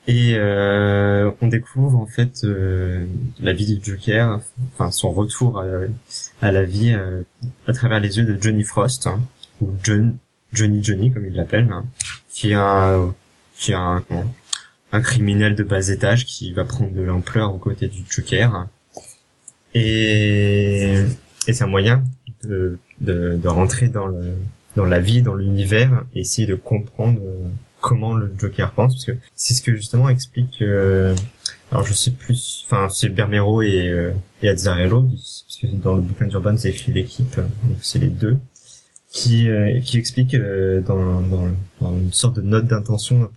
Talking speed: 175 wpm